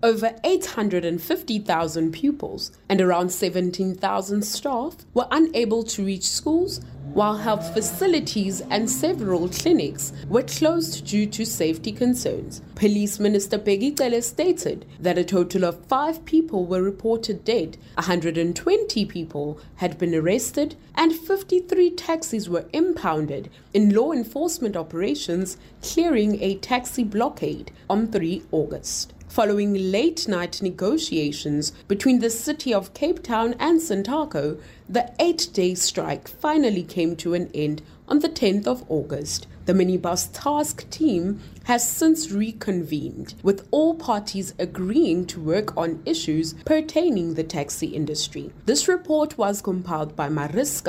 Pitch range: 175-275 Hz